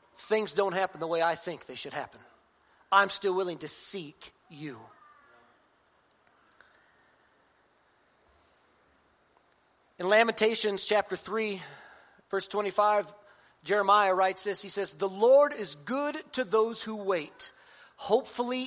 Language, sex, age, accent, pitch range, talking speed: English, male, 40-59, American, 170-235 Hz, 115 wpm